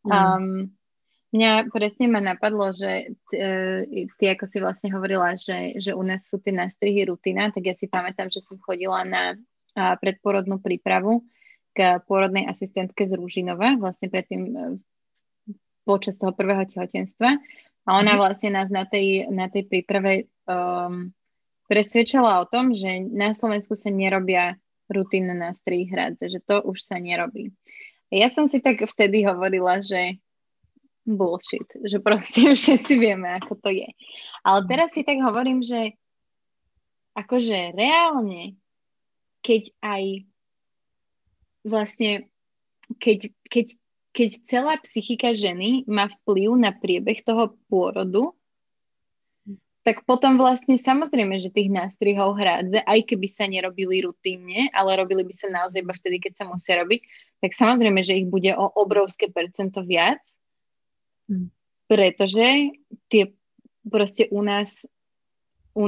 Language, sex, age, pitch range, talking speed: Slovak, female, 20-39, 190-225 Hz, 130 wpm